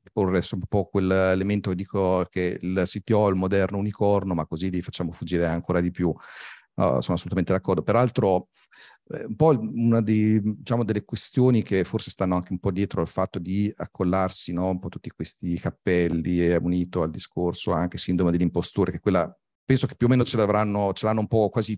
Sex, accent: male, native